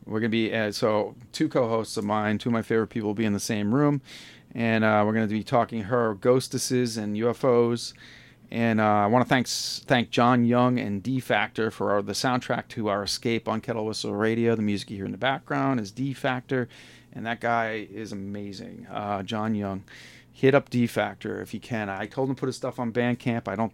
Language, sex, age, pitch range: English, male, 40-59, 105-130 Hz